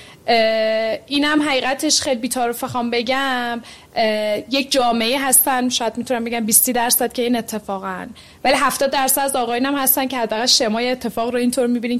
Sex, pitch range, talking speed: female, 225-275 Hz, 145 wpm